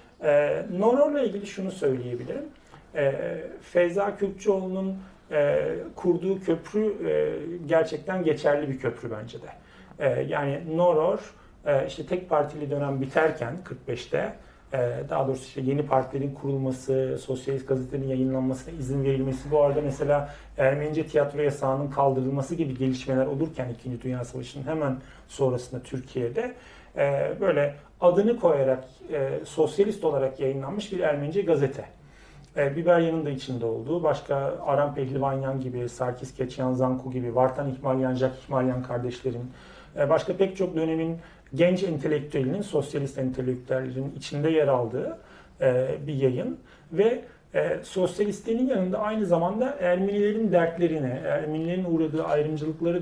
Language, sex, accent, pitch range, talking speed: Turkish, male, native, 130-175 Hz, 120 wpm